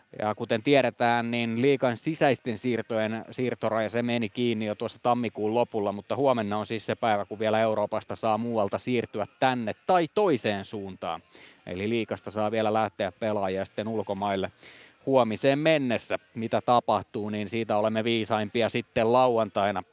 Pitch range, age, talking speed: 105-130 Hz, 30-49, 145 wpm